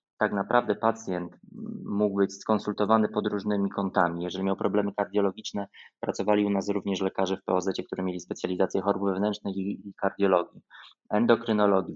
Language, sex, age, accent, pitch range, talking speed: Polish, male, 20-39, native, 95-105 Hz, 140 wpm